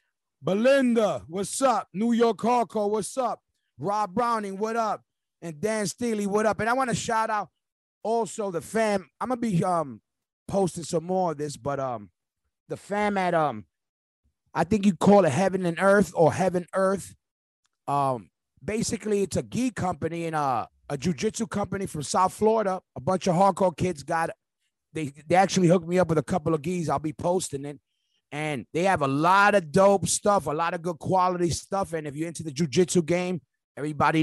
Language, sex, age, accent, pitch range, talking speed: English, male, 30-49, American, 145-195 Hz, 195 wpm